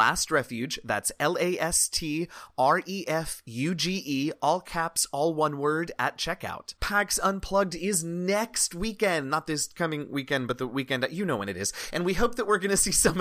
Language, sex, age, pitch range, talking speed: English, male, 30-49, 125-165 Hz, 175 wpm